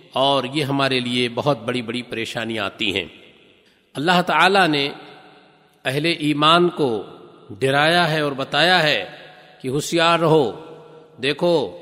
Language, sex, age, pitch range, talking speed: Urdu, male, 50-69, 145-170 Hz, 125 wpm